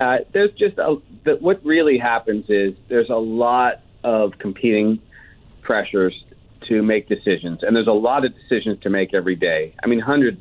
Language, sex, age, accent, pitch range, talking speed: English, male, 40-59, American, 105-120 Hz, 165 wpm